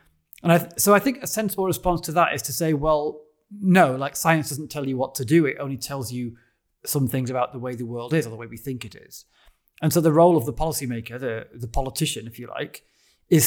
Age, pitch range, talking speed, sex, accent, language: 30-49, 125-165 Hz, 255 wpm, male, British, English